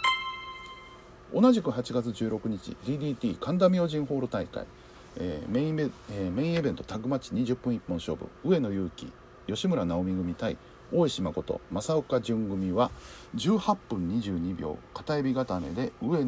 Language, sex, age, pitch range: Japanese, male, 50-69, 95-155 Hz